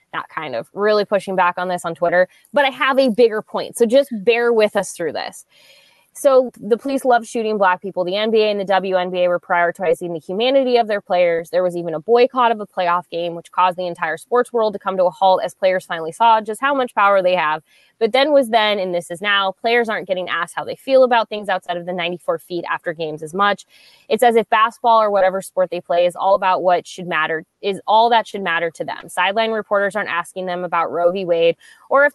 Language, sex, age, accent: English, female, 20-39, American